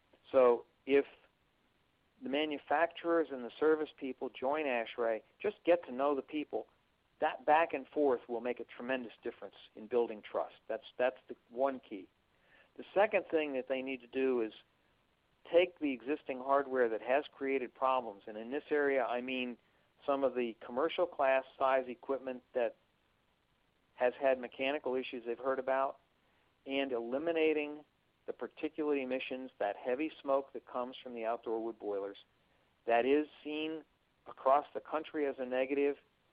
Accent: American